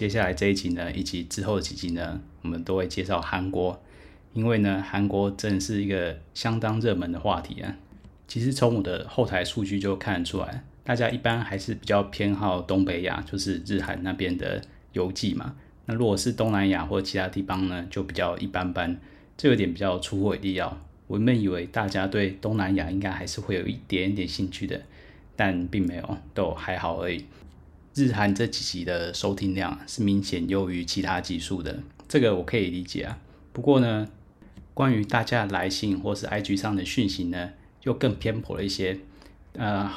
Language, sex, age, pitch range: Chinese, male, 20-39, 90-105 Hz